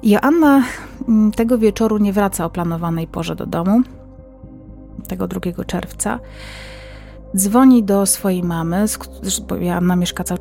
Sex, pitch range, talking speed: female, 180-220 Hz, 120 wpm